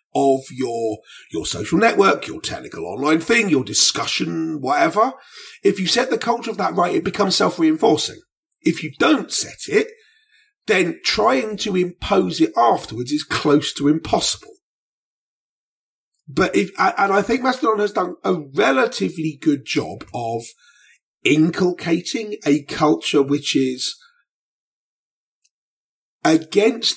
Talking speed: 130 wpm